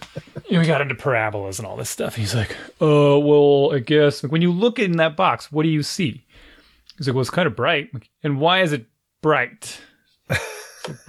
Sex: male